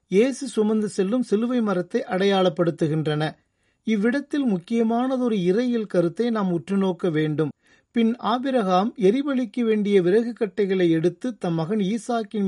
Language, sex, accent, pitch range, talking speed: Tamil, male, native, 180-230 Hz, 110 wpm